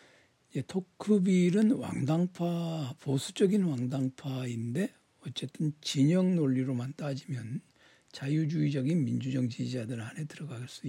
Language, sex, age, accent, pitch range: Korean, male, 60-79, native, 130-160 Hz